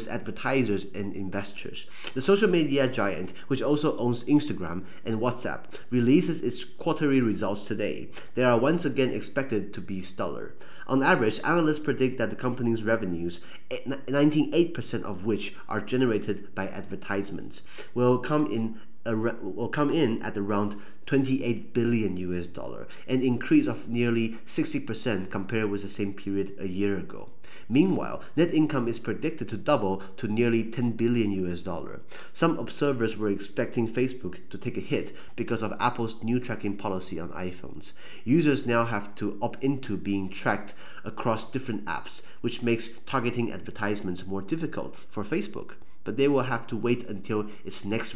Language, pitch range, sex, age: Chinese, 100-125 Hz, male, 30-49